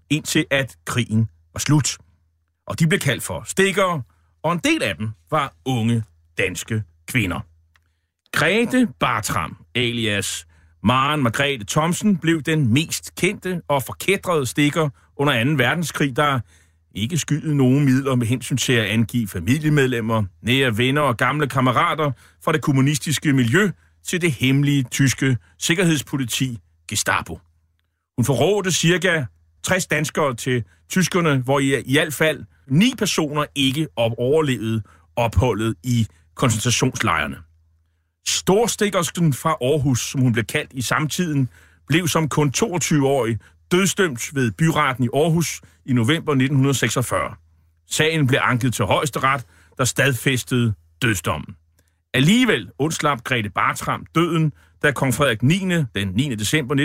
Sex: male